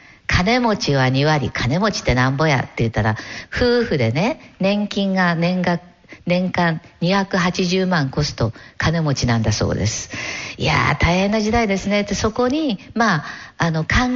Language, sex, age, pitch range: Japanese, female, 50-69, 140-220 Hz